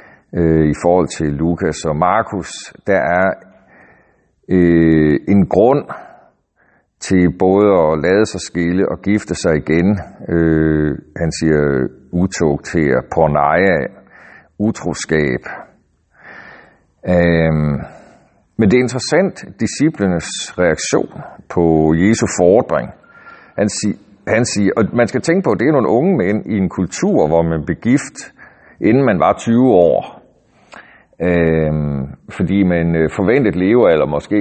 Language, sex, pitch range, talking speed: Danish, male, 80-100 Hz, 120 wpm